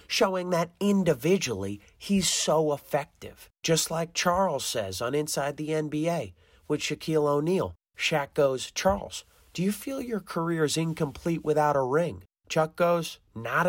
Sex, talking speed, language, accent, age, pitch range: male, 145 wpm, English, American, 30-49, 120-175 Hz